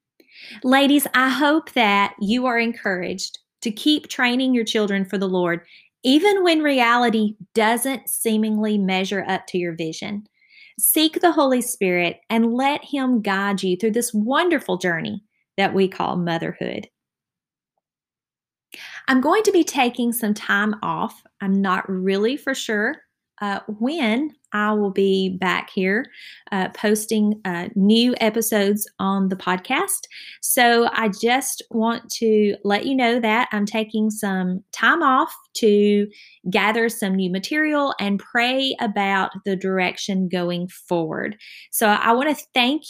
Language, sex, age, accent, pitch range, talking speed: English, female, 30-49, American, 195-255 Hz, 140 wpm